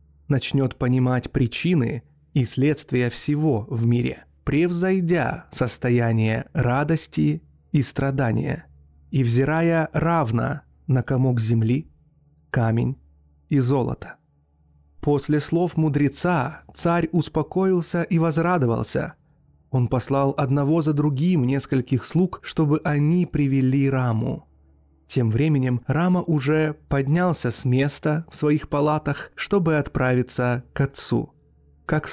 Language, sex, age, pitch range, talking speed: Russian, male, 20-39, 120-155 Hz, 105 wpm